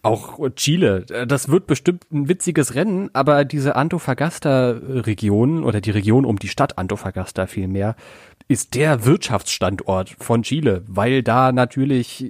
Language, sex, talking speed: German, male, 130 wpm